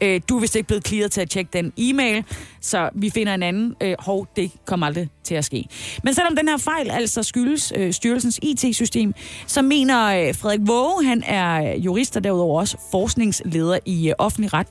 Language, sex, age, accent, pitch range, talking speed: Danish, female, 30-49, native, 180-240 Hz, 185 wpm